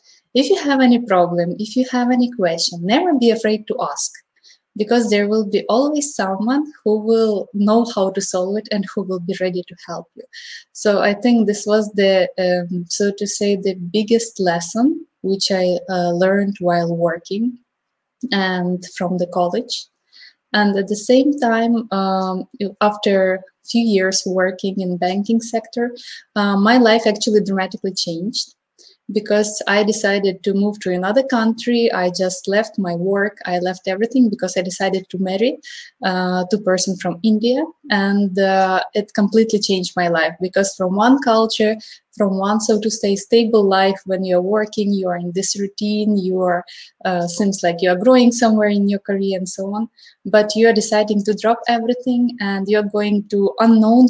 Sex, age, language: female, 20-39, English